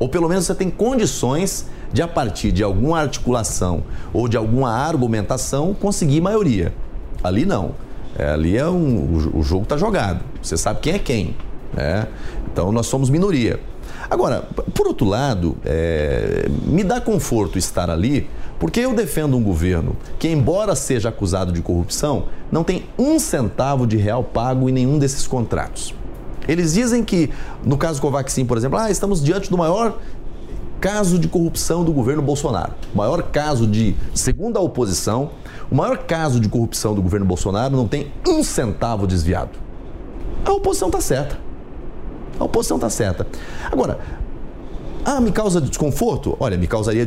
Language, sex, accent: English, male, Brazilian